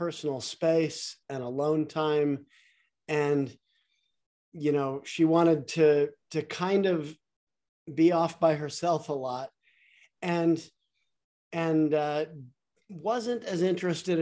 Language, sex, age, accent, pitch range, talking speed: English, male, 50-69, American, 145-165 Hz, 110 wpm